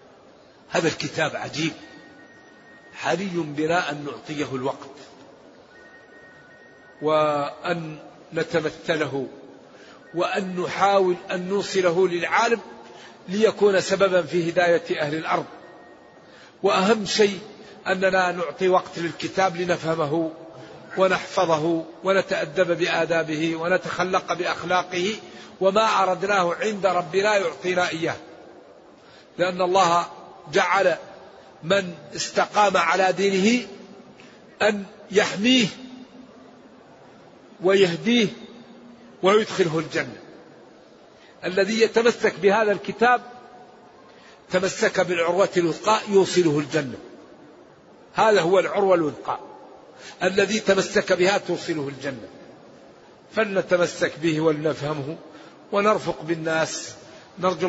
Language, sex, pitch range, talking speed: Arabic, male, 165-200 Hz, 80 wpm